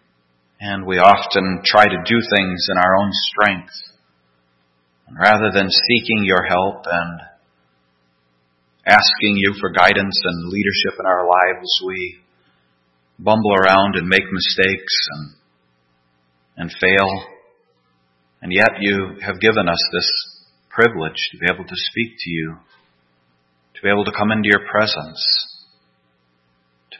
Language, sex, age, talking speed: English, male, 40-59, 135 wpm